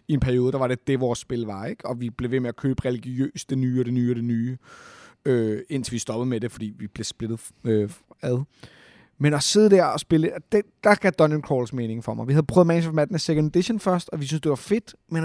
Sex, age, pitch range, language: male, 30-49, 135-175 Hz, Danish